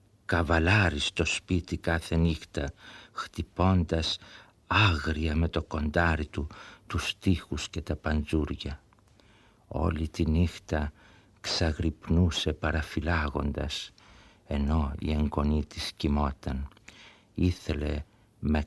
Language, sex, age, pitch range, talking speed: Greek, male, 60-79, 75-95 Hz, 90 wpm